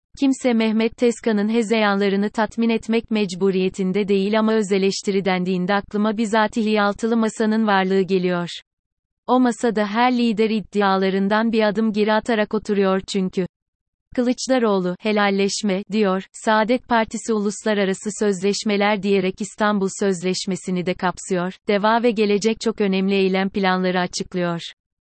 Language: Turkish